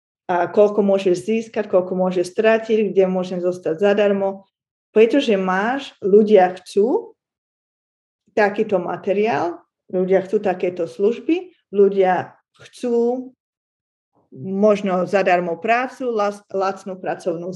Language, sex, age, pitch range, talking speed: Slovak, female, 20-39, 185-215 Hz, 100 wpm